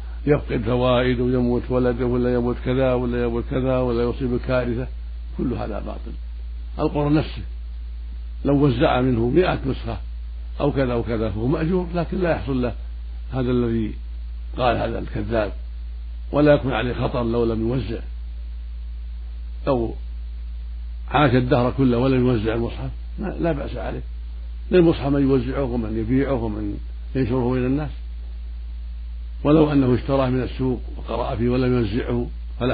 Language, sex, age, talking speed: Arabic, male, 60-79, 135 wpm